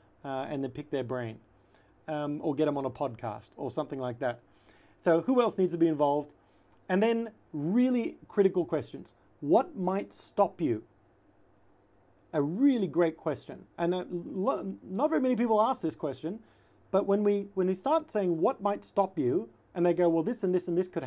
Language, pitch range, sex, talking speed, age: English, 135-185 Hz, male, 190 wpm, 40-59